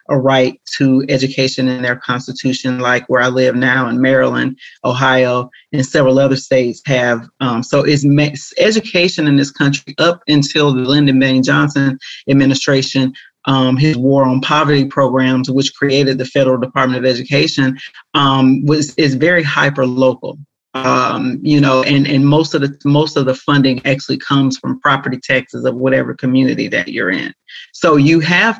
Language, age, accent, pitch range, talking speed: English, 30-49, American, 130-145 Hz, 165 wpm